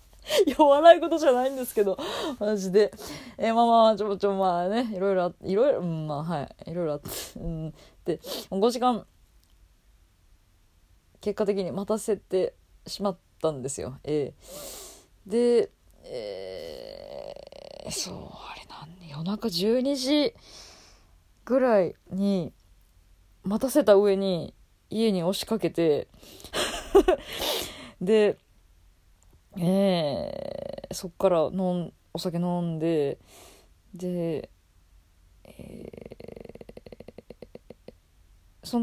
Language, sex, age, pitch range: Japanese, female, 20-39, 150-235 Hz